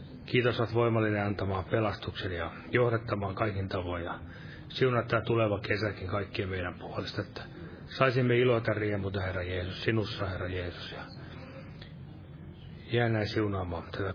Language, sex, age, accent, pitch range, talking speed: Finnish, male, 30-49, native, 100-120 Hz, 125 wpm